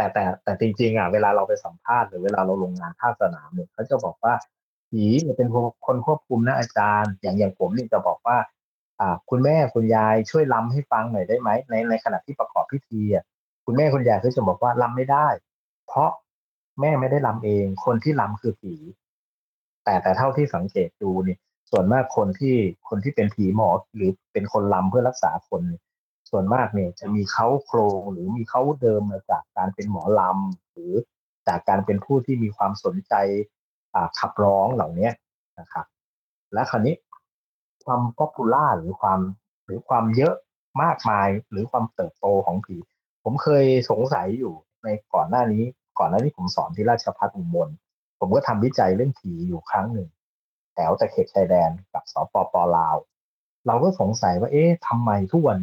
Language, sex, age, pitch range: Thai, male, 30-49, 100-130 Hz